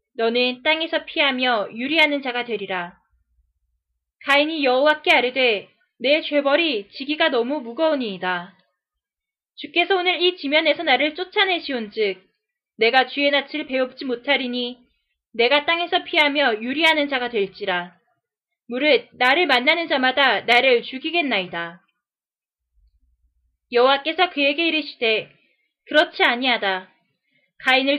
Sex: female